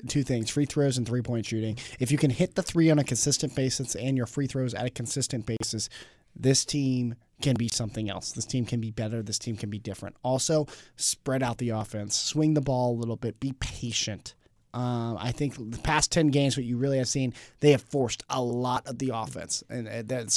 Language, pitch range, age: English, 115-140 Hz, 20-39